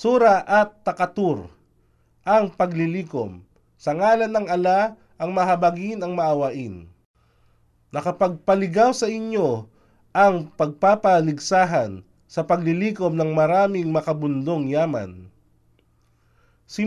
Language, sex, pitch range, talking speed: Filipino, male, 150-195 Hz, 90 wpm